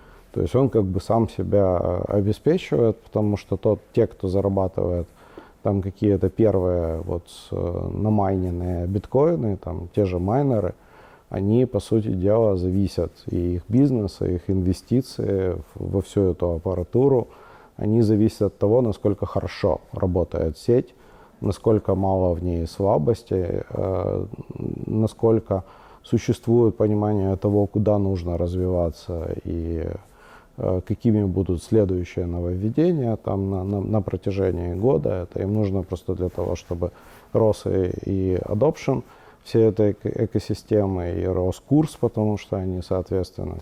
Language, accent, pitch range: Russian, native, 90-105 Hz